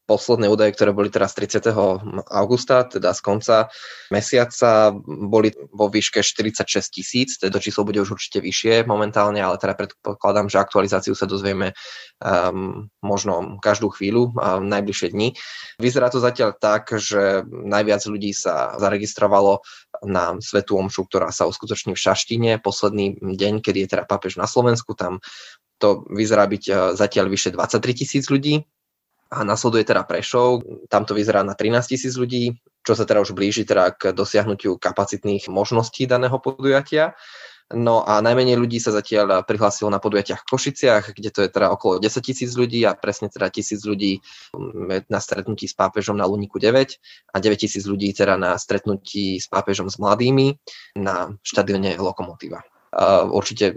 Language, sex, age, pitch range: Slovak, male, 20-39, 100-115 Hz